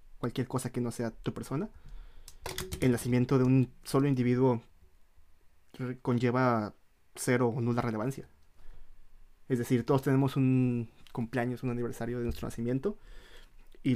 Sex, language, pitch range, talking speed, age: male, Spanish, 100-135 Hz, 130 wpm, 20-39